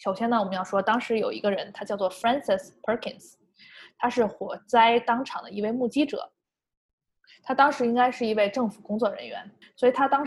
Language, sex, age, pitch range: Chinese, female, 20-39, 200-255 Hz